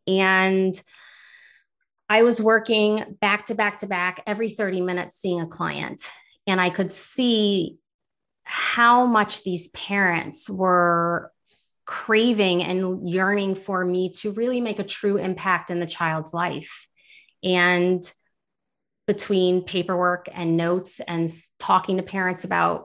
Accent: American